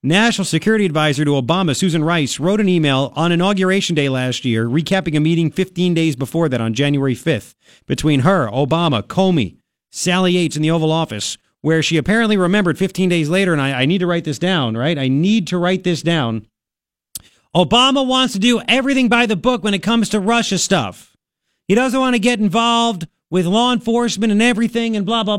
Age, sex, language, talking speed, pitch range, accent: 40-59, male, English, 200 wpm, 150-200 Hz, American